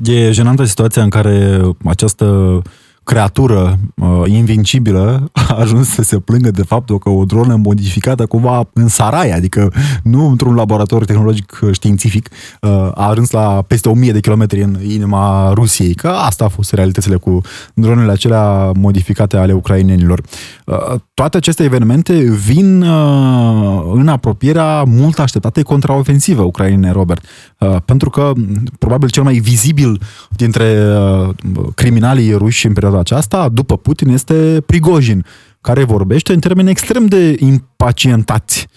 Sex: male